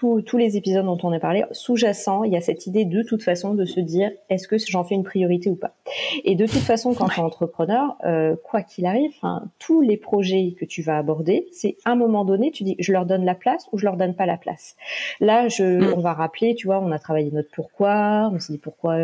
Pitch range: 175-225 Hz